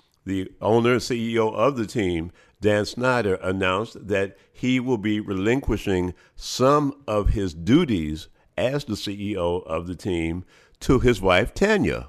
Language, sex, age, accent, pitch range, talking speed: English, male, 50-69, American, 90-115 Hz, 145 wpm